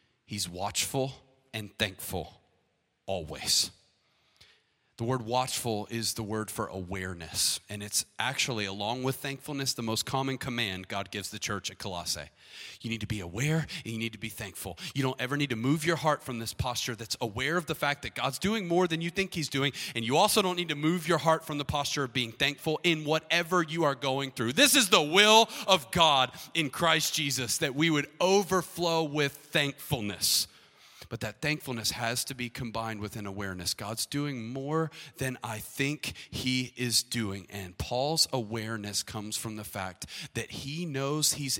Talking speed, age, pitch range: 190 wpm, 30-49, 105-145 Hz